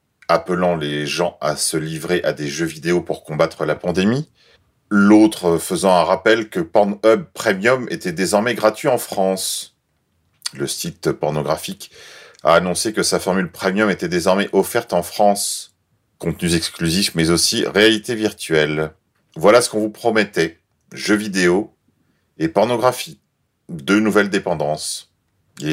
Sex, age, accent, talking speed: male, 40-59, French, 140 wpm